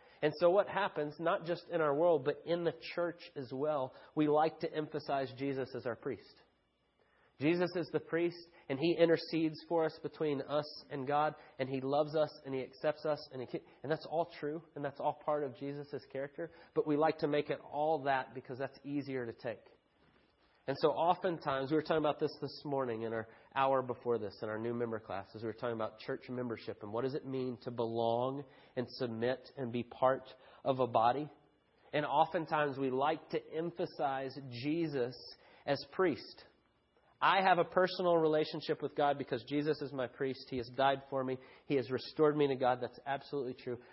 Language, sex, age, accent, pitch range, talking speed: English, male, 30-49, American, 130-155 Hz, 200 wpm